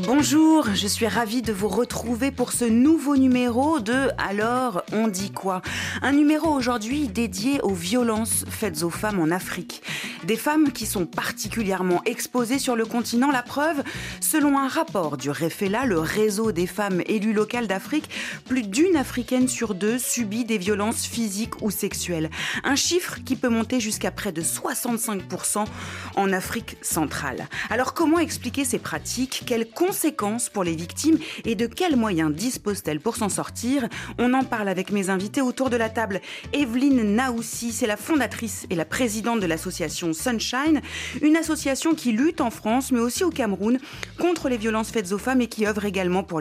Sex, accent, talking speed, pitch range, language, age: female, French, 170 wpm, 200-265 Hz, French, 30-49